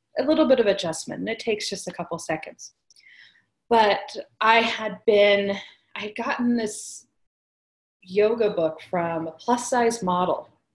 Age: 30-49